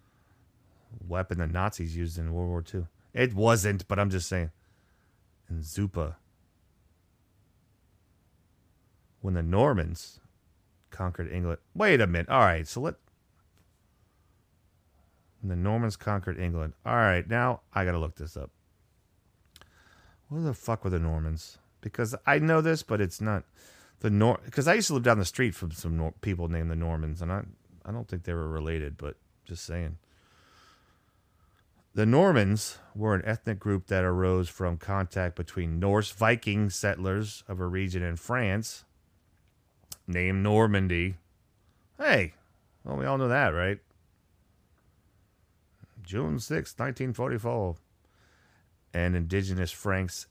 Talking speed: 140 wpm